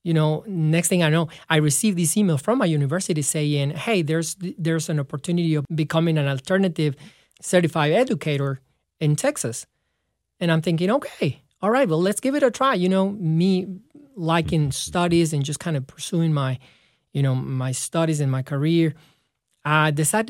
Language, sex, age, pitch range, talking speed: English, male, 30-49, 145-180 Hz, 175 wpm